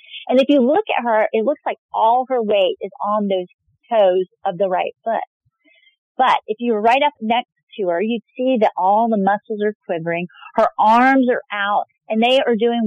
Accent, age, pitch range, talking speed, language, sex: American, 40-59, 195-250 Hz, 210 wpm, English, female